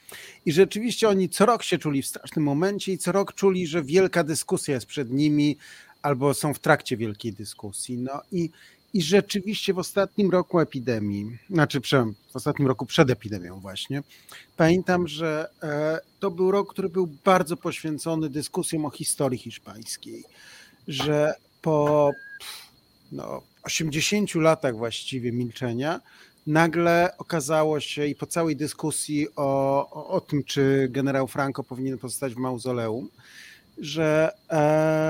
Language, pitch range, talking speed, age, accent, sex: Polish, 135-175 Hz, 135 wpm, 40-59, native, male